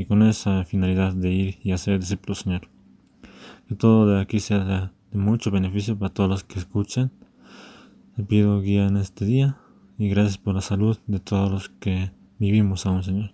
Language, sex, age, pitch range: Spanish, male, 20-39, 95-110 Hz